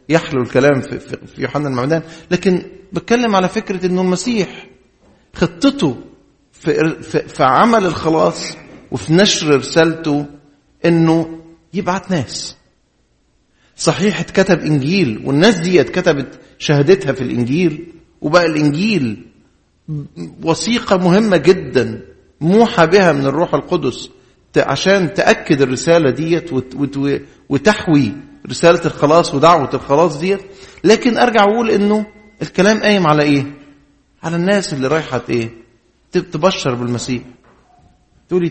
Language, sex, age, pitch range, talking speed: English, male, 50-69, 130-180 Hz, 105 wpm